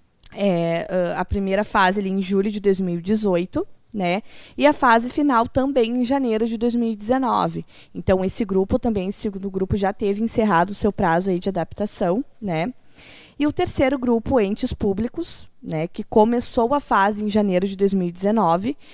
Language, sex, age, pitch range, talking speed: Portuguese, female, 20-39, 195-235 Hz, 160 wpm